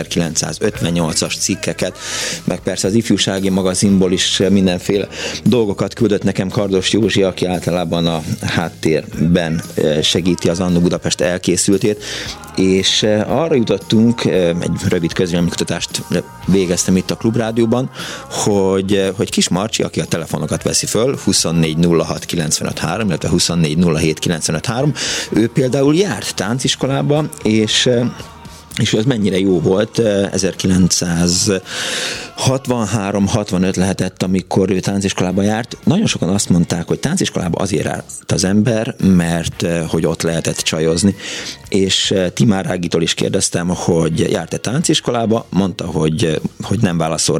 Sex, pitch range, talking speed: male, 85-110 Hz, 115 wpm